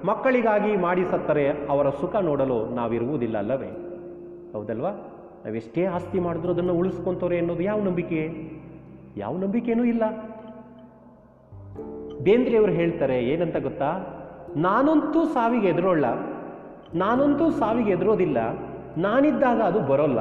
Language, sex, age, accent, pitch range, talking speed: Kannada, male, 30-49, native, 140-230 Hz, 95 wpm